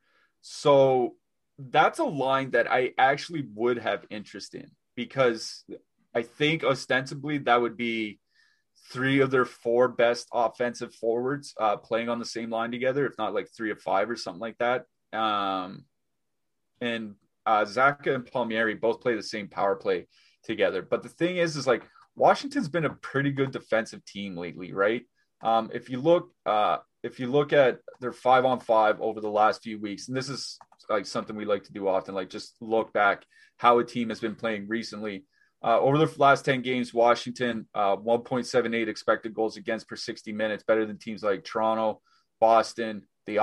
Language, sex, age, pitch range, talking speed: English, male, 30-49, 110-130 Hz, 180 wpm